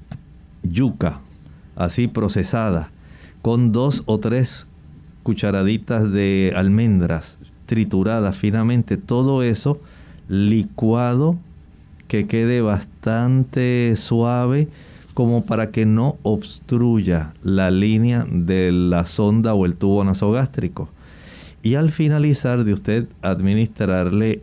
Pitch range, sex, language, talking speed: 95-120 Hz, male, Spanish, 95 wpm